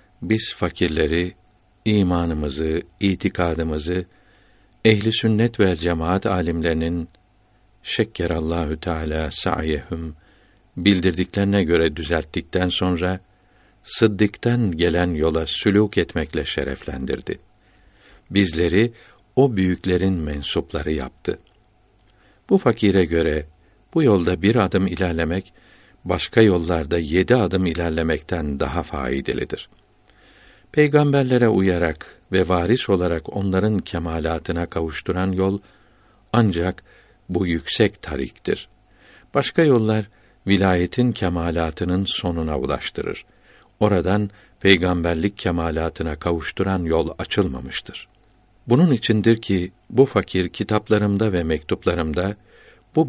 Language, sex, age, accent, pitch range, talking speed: Turkish, male, 60-79, native, 85-105 Hz, 85 wpm